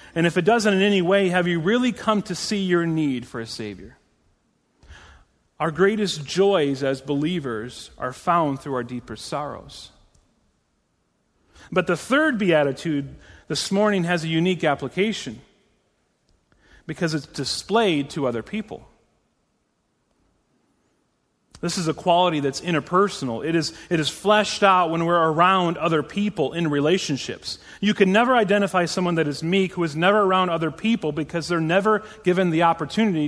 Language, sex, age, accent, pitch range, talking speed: English, male, 40-59, American, 140-190 Hz, 150 wpm